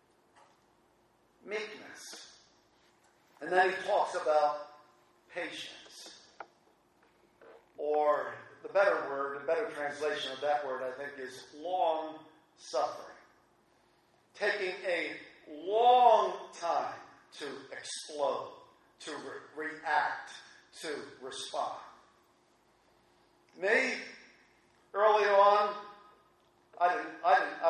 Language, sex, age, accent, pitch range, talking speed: English, male, 50-69, American, 145-205 Hz, 80 wpm